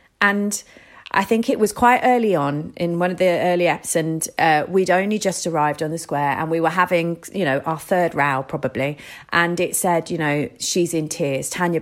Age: 30-49